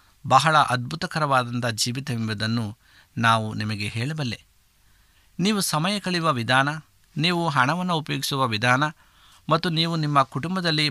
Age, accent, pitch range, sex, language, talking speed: 50-69, native, 110-155 Hz, male, Kannada, 100 wpm